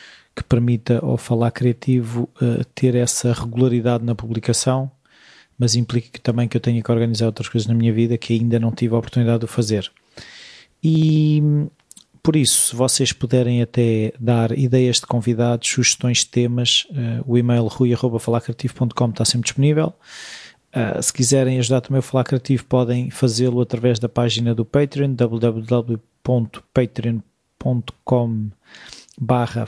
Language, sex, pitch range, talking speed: Portuguese, male, 120-130 Hz, 140 wpm